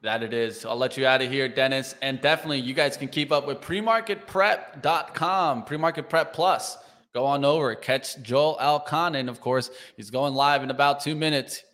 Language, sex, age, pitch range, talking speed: English, male, 20-39, 130-175 Hz, 190 wpm